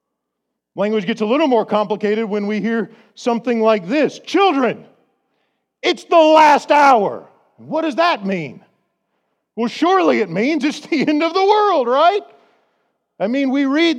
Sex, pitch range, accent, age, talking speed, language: male, 190-280 Hz, American, 50-69, 155 wpm, English